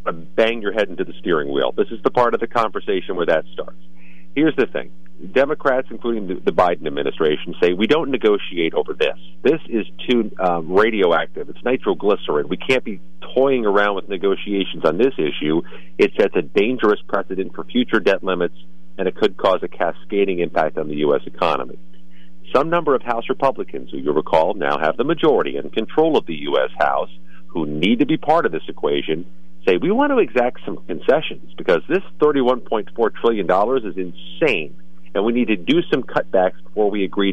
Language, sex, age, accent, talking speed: English, male, 40-59, American, 190 wpm